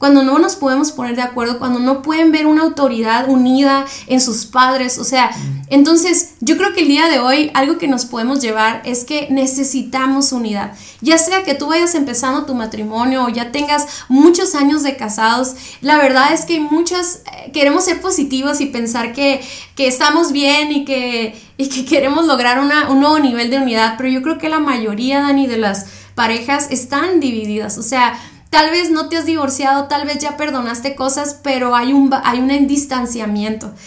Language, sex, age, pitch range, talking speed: Spanish, female, 10-29, 245-290 Hz, 190 wpm